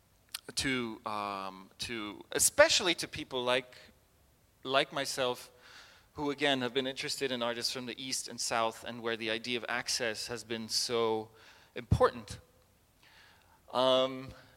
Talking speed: 130 wpm